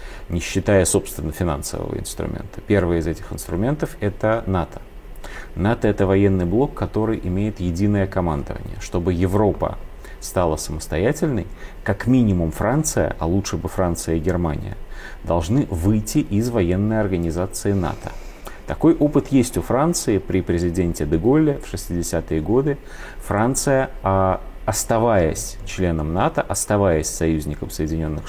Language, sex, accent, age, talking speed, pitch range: Russian, male, native, 30-49, 125 wpm, 85-110 Hz